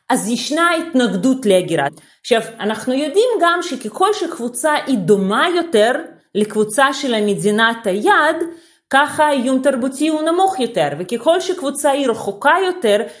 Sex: female